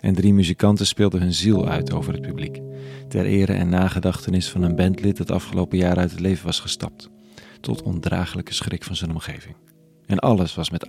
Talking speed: 195 wpm